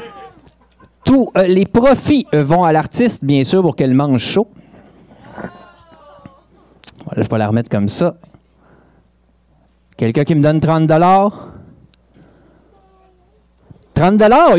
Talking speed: 120 wpm